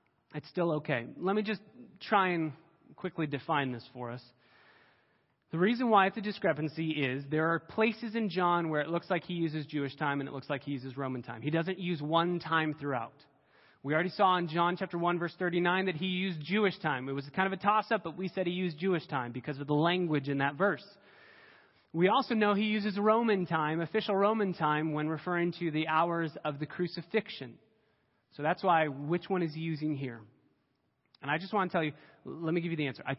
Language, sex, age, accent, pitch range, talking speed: English, male, 30-49, American, 145-190 Hz, 220 wpm